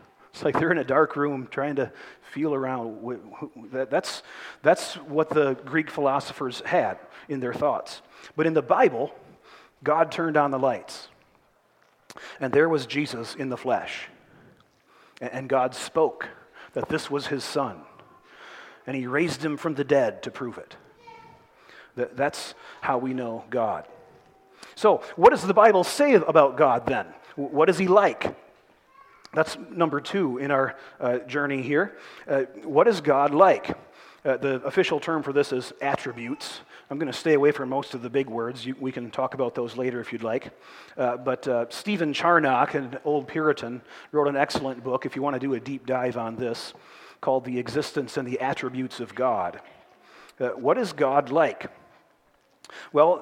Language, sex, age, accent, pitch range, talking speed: English, male, 40-59, American, 130-160 Hz, 170 wpm